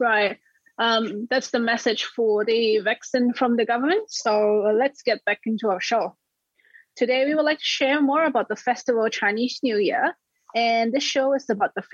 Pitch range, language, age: 210-265 Hz, Chinese, 20-39